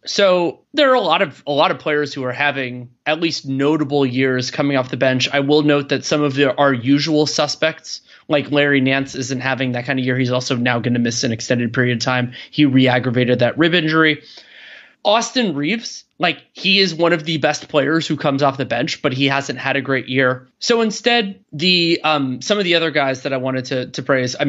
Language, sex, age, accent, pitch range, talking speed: English, male, 20-39, American, 130-155 Hz, 230 wpm